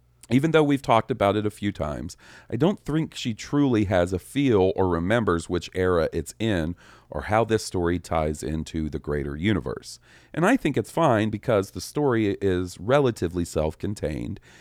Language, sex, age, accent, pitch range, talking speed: English, male, 40-59, American, 80-115 Hz, 175 wpm